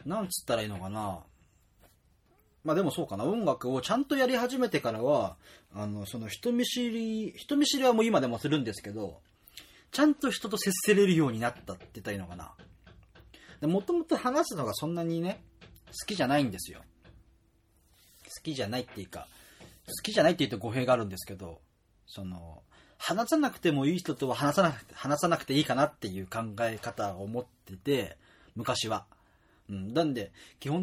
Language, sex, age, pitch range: Japanese, male, 30-49, 95-160 Hz